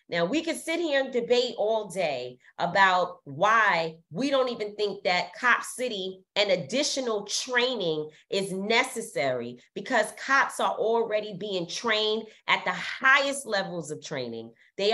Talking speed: 145 wpm